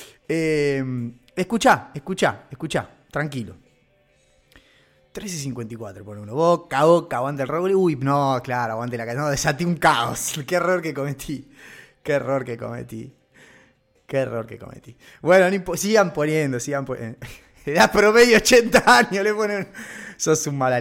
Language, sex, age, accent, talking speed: Spanish, male, 20-39, Argentinian, 145 wpm